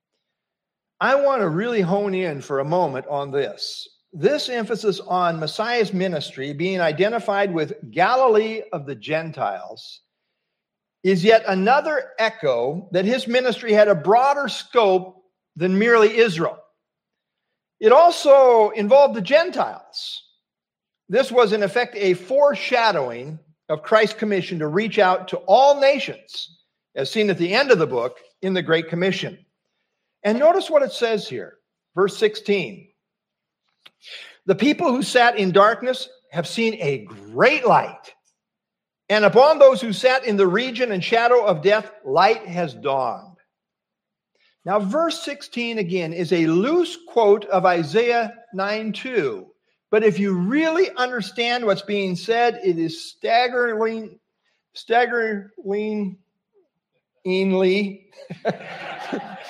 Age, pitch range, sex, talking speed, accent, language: 50-69, 185-245 Hz, male, 130 wpm, American, English